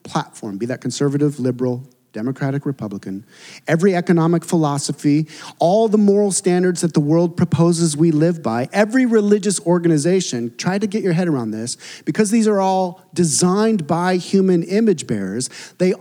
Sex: male